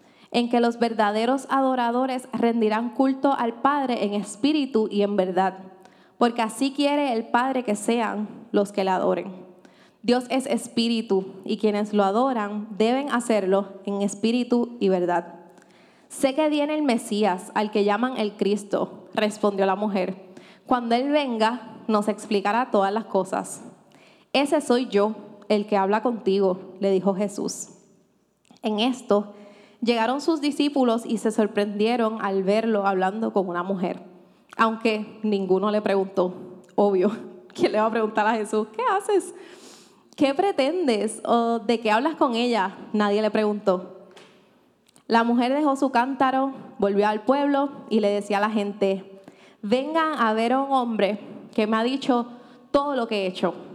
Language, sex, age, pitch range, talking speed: Spanish, female, 20-39, 205-245 Hz, 155 wpm